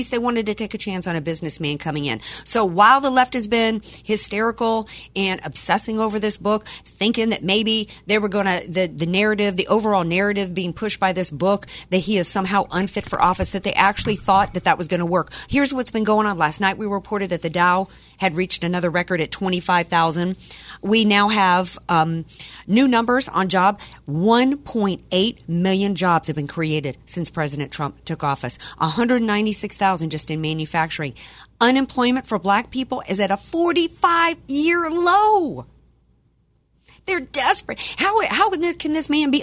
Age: 40-59